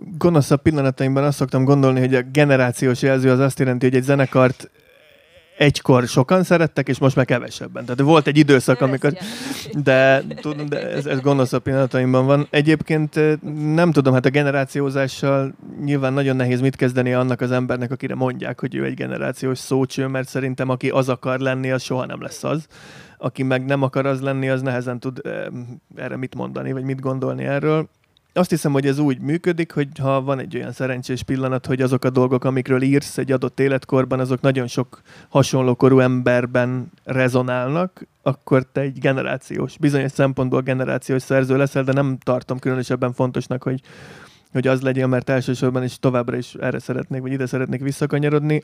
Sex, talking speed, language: male, 175 wpm, Hungarian